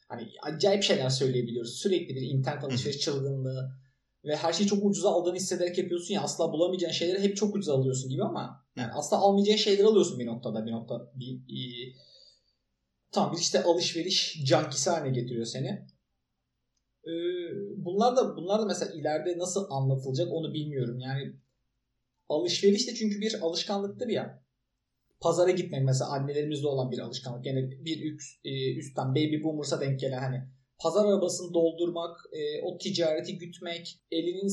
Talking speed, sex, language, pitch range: 145 wpm, male, Turkish, 135-195 Hz